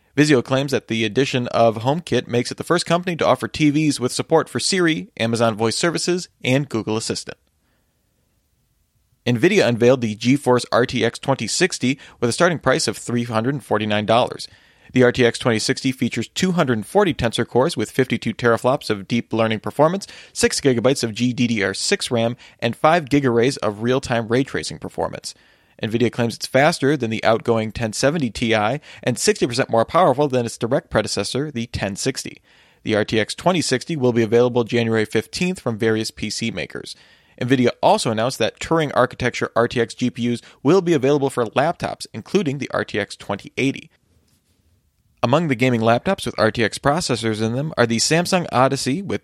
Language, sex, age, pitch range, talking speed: English, male, 30-49, 110-135 Hz, 150 wpm